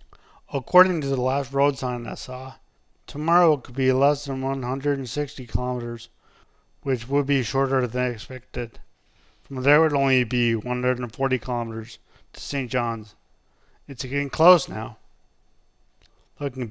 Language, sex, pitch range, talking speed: English, male, 120-140 Hz, 135 wpm